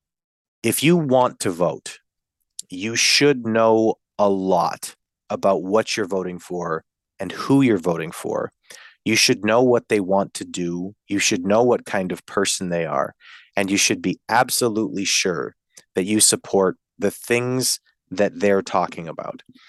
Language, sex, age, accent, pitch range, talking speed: English, male, 30-49, American, 95-125 Hz, 160 wpm